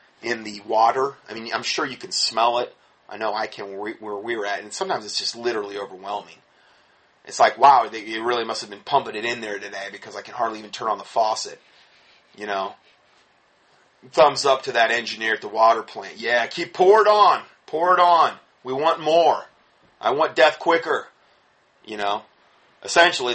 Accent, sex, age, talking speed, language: American, male, 30-49, 195 wpm, English